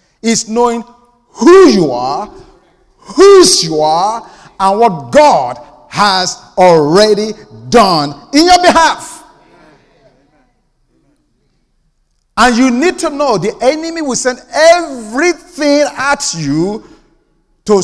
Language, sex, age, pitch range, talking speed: English, male, 50-69, 175-265 Hz, 100 wpm